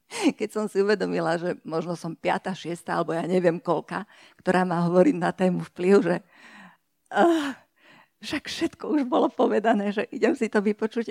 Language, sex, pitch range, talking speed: Slovak, female, 170-205 Hz, 165 wpm